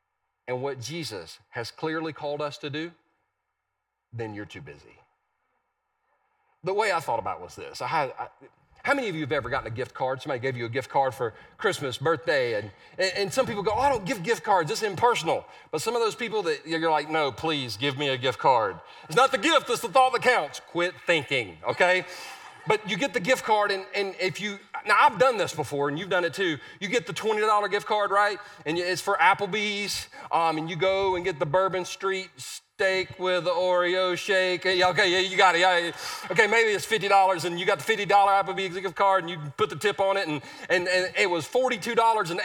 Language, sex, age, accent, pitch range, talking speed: English, male, 40-59, American, 175-285 Hz, 235 wpm